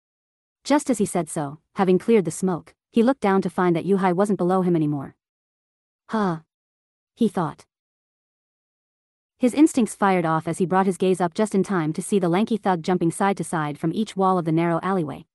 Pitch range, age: 170-215 Hz, 40-59